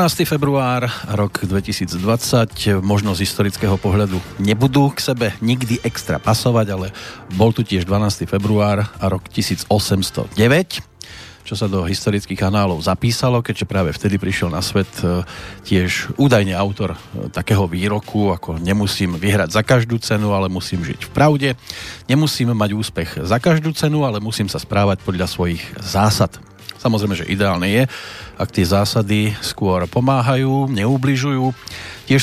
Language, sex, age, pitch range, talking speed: Slovak, male, 40-59, 95-120 Hz, 140 wpm